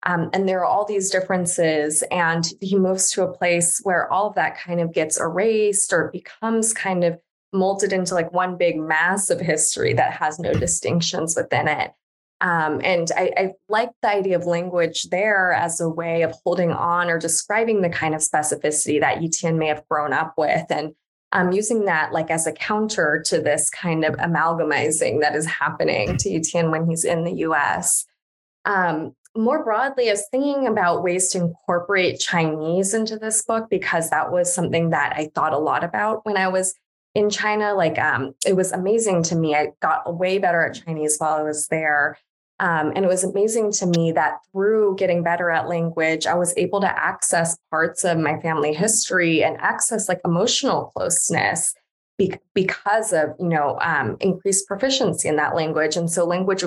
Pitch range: 160-195 Hz